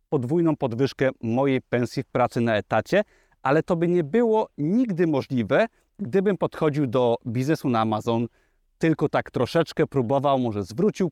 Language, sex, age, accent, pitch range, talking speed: Polish, male, 30-49, native, 125-165 Hz, 145 wpm